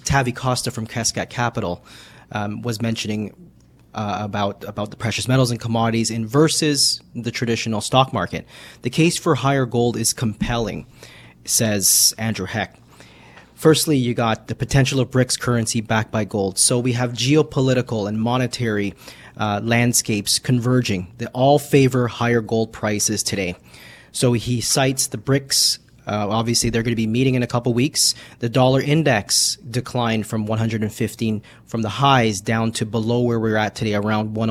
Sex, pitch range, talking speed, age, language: male, 110-130 Hz, 165 wpm, 30-49, English